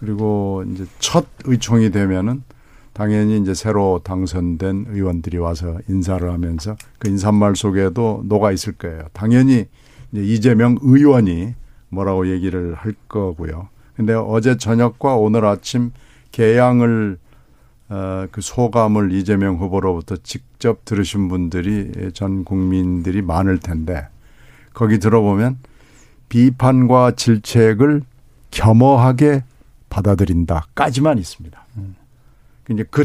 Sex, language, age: male, Korean, 60-79